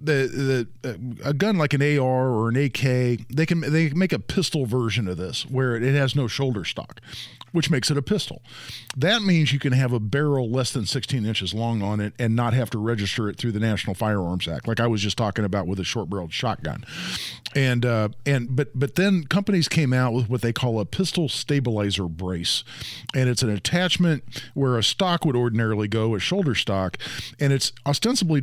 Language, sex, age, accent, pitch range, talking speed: English, male, 50-69, American, 115-145 Hz, 210 wpm